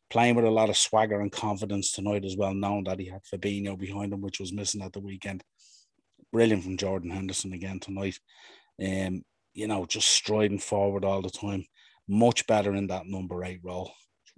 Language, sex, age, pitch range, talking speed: English, male, 30-49, 100-115 Hz, 190 wpm